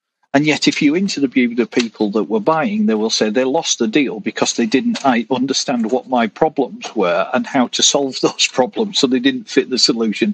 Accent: British